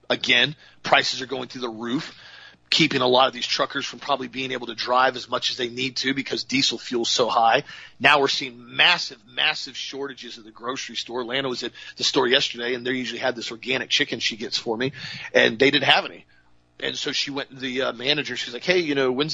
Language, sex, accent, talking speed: English, male, American, 235 wpm